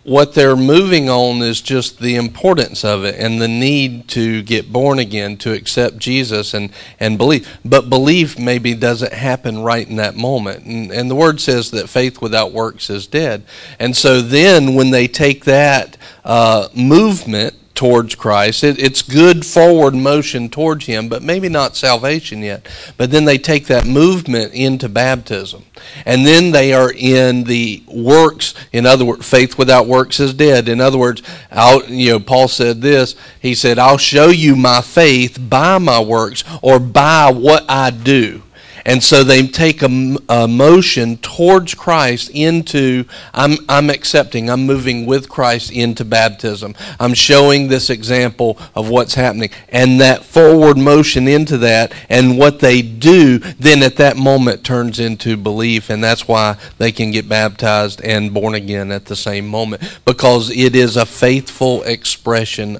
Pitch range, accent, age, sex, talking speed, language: 115-140 Hz, American, 40-59, male, 170 wpm, English